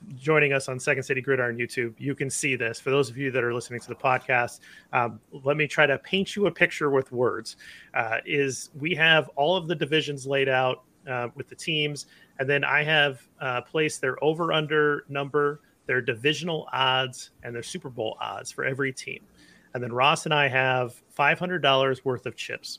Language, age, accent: English, 30-49, American